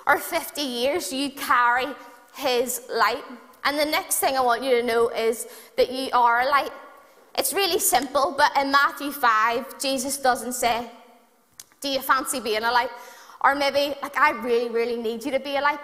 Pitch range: 240-290 Hz